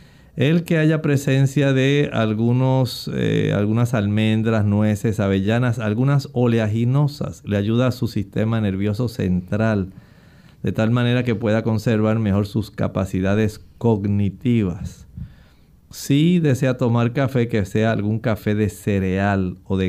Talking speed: 125 wpm